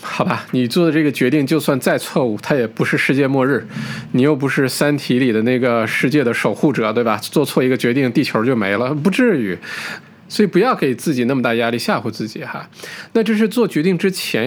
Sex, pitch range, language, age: male, 120-165 Hz, Chinese, 20-39